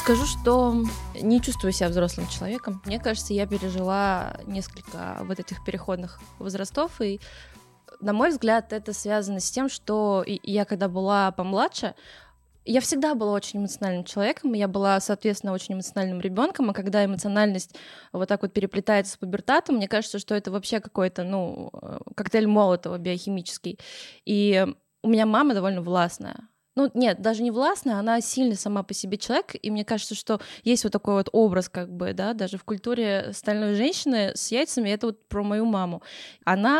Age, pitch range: 20-39, 195-235 Hz